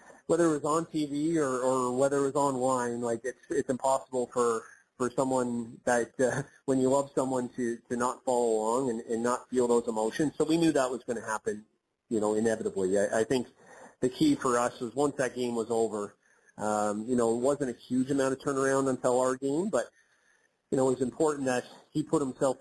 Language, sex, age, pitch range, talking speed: English, male, 30-49, 115-140 Hz, 220 wpm